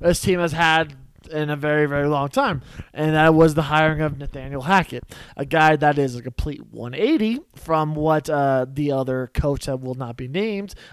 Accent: American